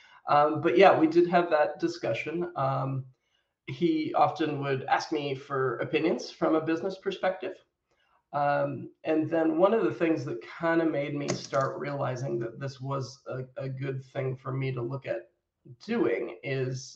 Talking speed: 170 wpm